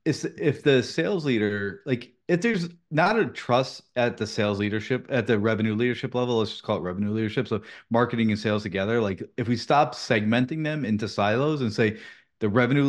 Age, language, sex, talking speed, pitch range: 30-49, English, male, 195 wpm, 105-130 Hz